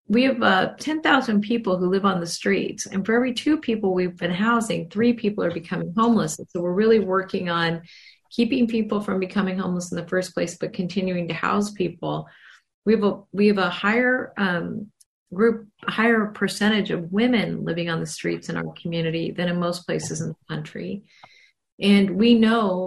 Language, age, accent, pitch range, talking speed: English, 40-59, American, 170-210 Hz, 190 wpm